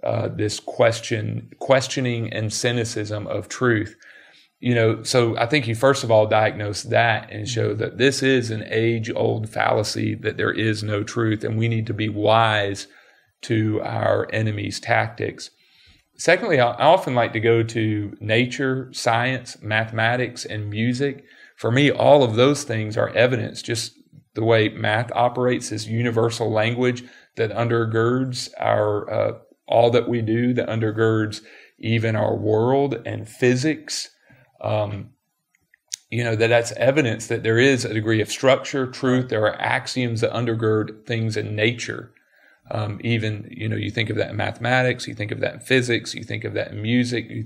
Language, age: English, 40-59